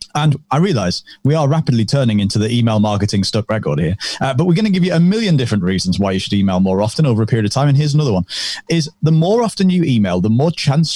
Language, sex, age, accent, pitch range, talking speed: English, male, 30-49, British, 110-155 Hz, 270 wpm